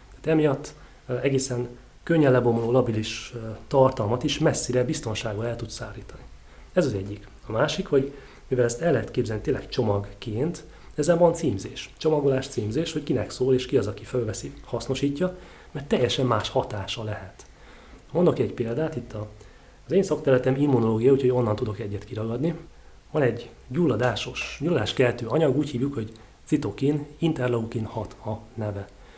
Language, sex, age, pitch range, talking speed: Hungarian, male, 30-49, 110-135 Hz, 145 wpm